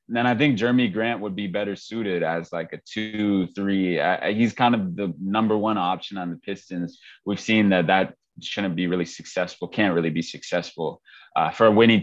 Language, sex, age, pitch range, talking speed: English, male, 20-39, 95-110 Hz, 205 wpm